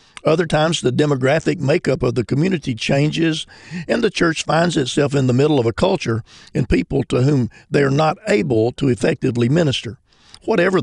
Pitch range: 115-150 Hz